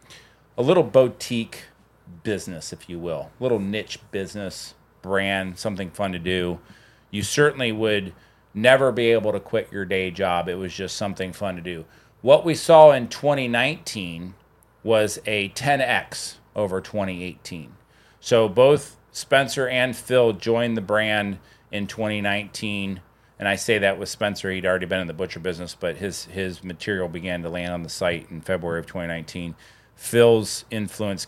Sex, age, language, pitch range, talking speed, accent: male, 30-49, English, 90-115 Hz, 155 wpm, American